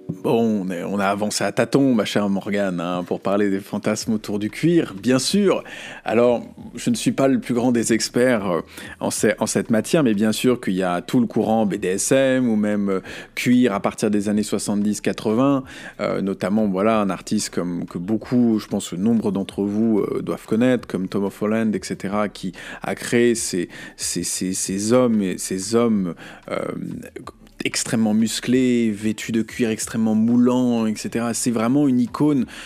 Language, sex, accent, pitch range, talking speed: French, male, French, 105-135 Hz, 180 wpm